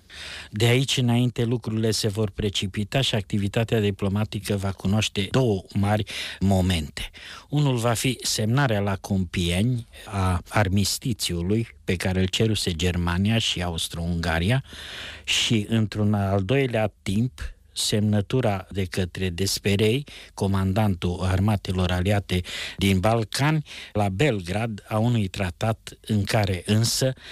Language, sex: Romanian, male